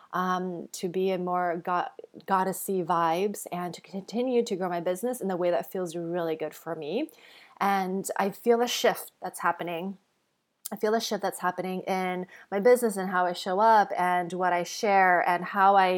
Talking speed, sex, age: 195 wpm, female, 20-39